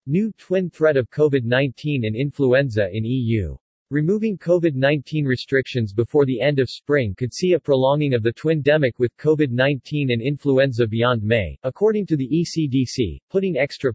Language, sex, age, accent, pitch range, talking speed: English, male, 40-59, American, 120-150 Hz, 155 wpm